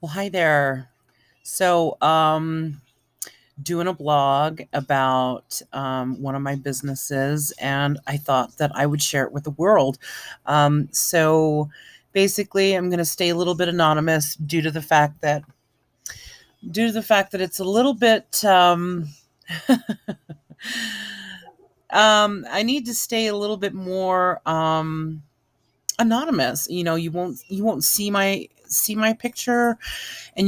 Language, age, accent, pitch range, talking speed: English, 30-49, American, 145-195 Hz, 145 wpm